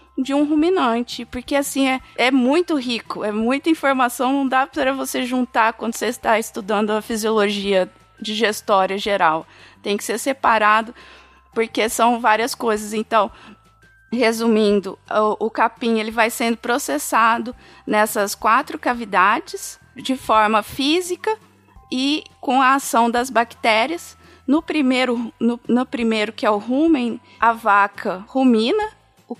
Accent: Brazilian